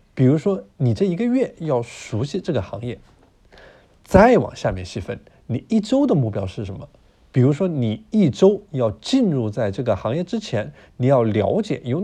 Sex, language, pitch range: male, Chinese, 110-180 Hz